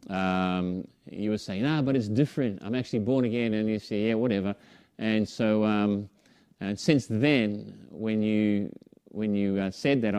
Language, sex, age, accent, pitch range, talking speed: English, male, 30-49, Australian, 95-105 Hz, 175 wpm